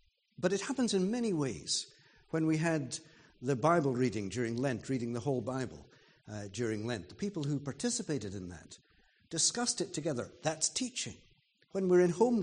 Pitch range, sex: 115-160 Hz, male